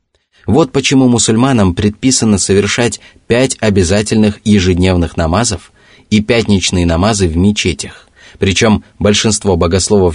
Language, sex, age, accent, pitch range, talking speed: Russian, male, 20-39, native, 90-110 Hz, 100 wpm